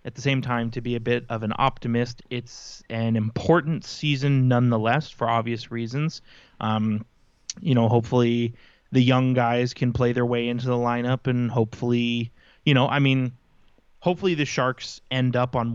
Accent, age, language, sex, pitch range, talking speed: American, 20-39, English, male, 115-135 Hz, 170 wpm